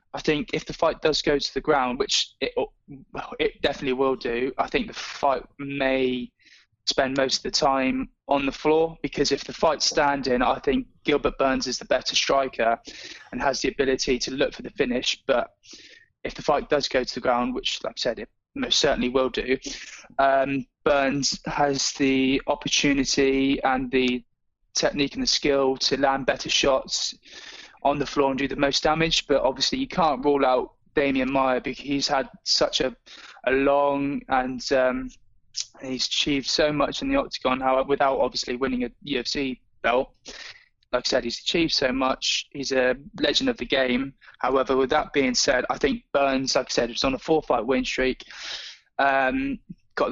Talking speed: 190 wpm